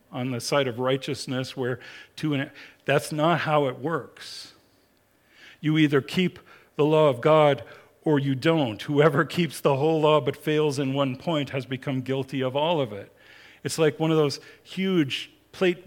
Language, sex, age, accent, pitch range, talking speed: English, male, 50-69, American, 115-150 Hz, 180 wpm